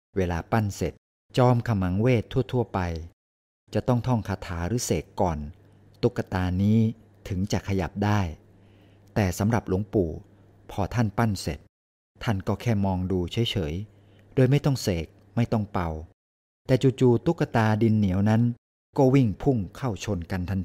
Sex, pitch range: male, 90-115 Hz